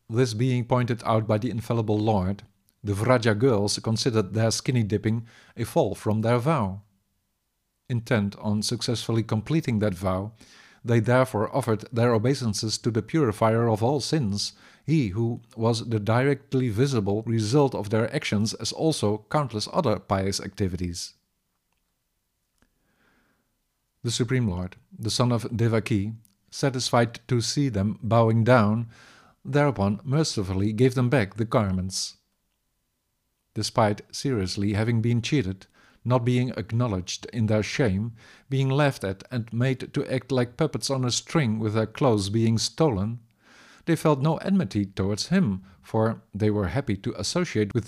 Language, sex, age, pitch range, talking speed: English, male, 50-69, 105-125 Hz, 140 wpm